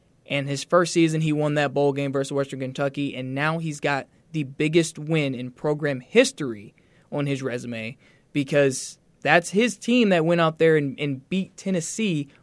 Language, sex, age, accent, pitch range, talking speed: English, male, 20-39, American, 150-190 Hz, 180 wpm